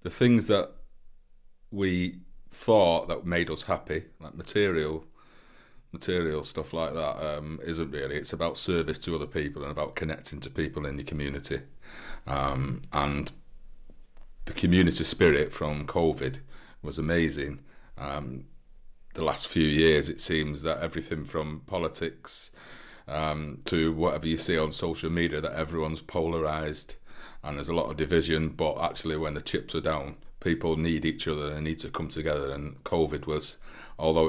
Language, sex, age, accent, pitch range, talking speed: English, male, 30-49, British, 75-80 Hz, 155 wpm